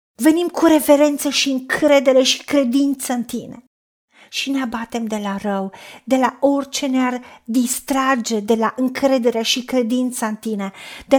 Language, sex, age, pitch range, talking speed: Romanian, female, 50-69, 240-280 Hz, 150 wpm